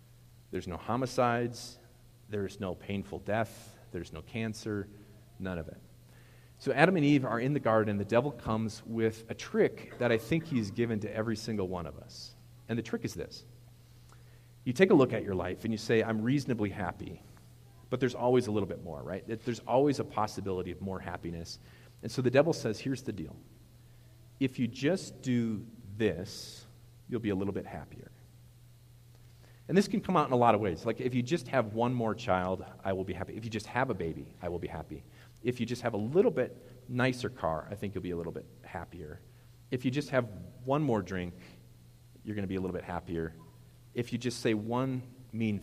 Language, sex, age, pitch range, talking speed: English, male, 40-59, 95-120 Hz, 210 wpm